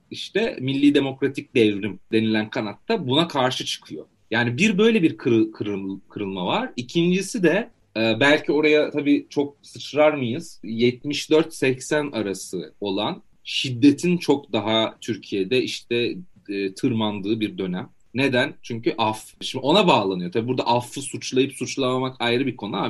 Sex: male